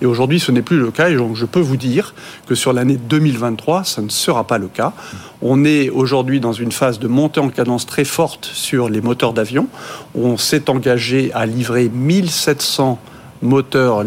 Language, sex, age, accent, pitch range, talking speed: French, male, 50-69, French, 120-155 Hz, 195 wpm